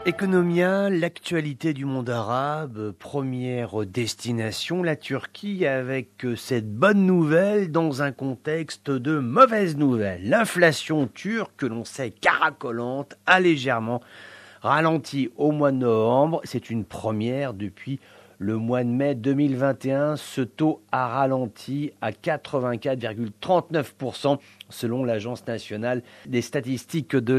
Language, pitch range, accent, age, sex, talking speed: English, 120-145 Hz, French, 40-59, male, 115 wpm